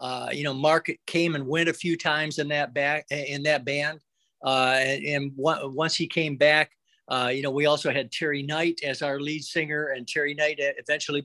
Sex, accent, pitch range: male, American, 135-165 Hz